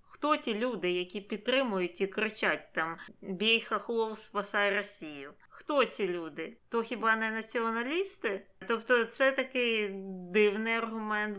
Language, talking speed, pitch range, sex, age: Ukrainian, 125 wpm, 185-220 Hz, female, 20-39